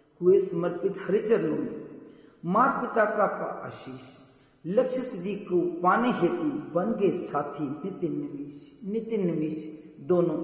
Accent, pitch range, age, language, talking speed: native, 155-230 Hz, 40-59, Hindi, 85 wpm